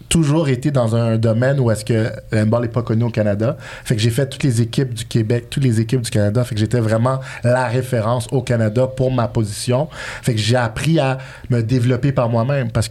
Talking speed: 235 wpm